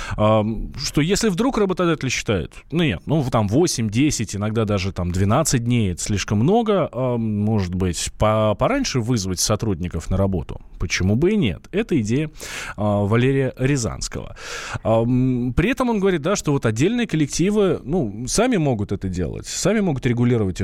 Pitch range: 100-150 Hz